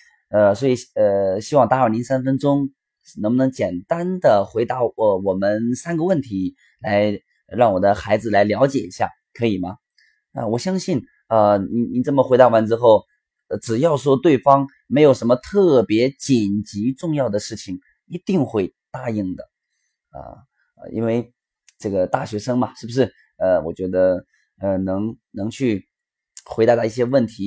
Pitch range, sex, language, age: 105-145 Hz, male, Chinese, 20-39